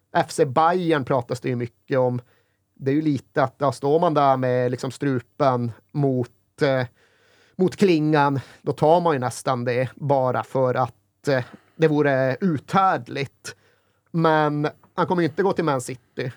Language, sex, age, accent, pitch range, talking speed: Swedish, male, 30-49, native, 125-155 Hz, 165 wpm